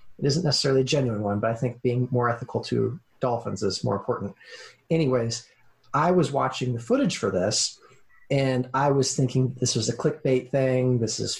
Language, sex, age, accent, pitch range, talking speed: English, male, 30-49, American, 125-165 Hz, 190 wpm